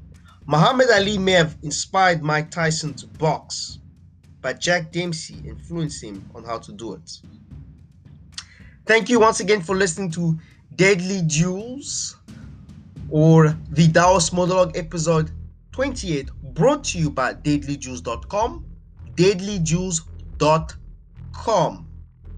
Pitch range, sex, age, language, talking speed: 125-180 Hz, male, 20-39, English, 105 wpm